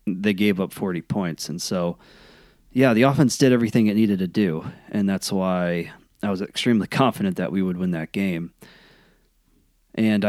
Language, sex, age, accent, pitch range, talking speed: English, male, 20-39, American, 95-110 Hz, 175 wpm